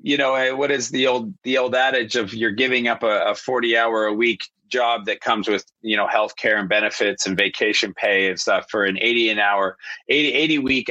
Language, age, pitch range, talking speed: English, 30-49, 95-125 Hz, 235 wpm